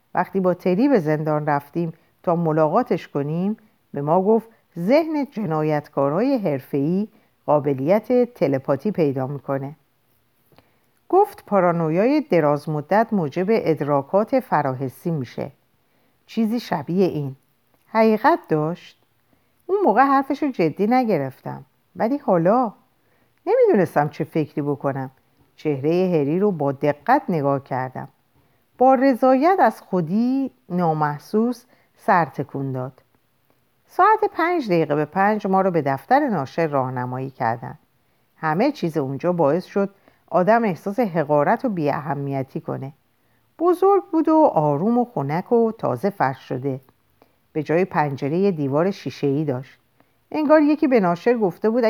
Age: 50-69